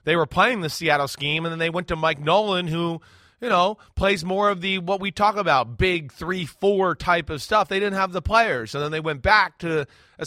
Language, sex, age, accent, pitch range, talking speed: English, male, 30-49, American, 145-200 Hz, 240 wpm